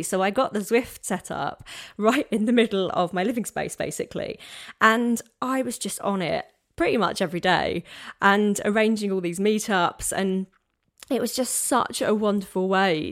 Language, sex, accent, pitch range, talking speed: English, female, British, 170-205 Hz, 180 wpm